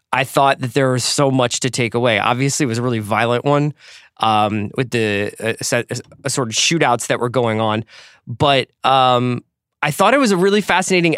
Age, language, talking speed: 20-39, English, 205 wpm